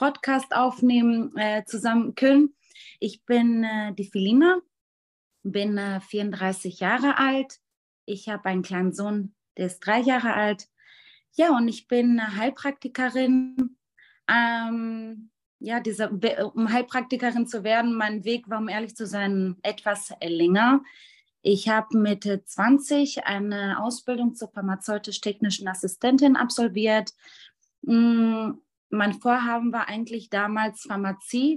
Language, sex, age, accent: German, female, 20-39, German